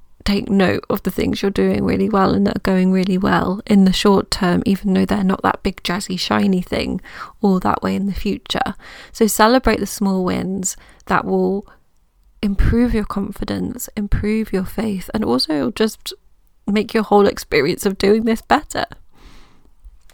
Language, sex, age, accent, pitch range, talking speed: English, female, 30-49, British, 185-225 Hz, 175 wpm